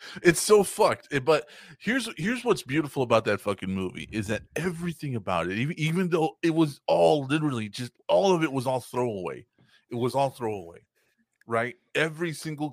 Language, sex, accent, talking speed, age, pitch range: English, male, American, 185 wpm, 30-49, 105-140 Hz